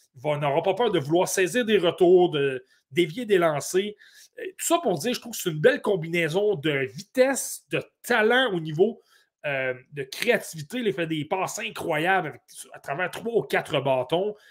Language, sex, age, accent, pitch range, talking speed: French, male, 30-49, Canadian, 150-215 Hz, 195 wpm